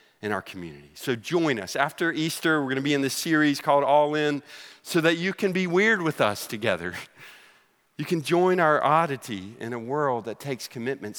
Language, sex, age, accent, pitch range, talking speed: English, male, 40-59, American, 125-165 Hz, 205 wpm